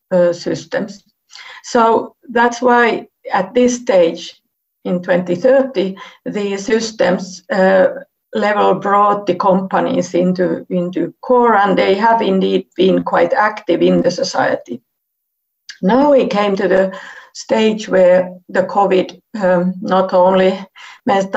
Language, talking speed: Finnish, 120 wpm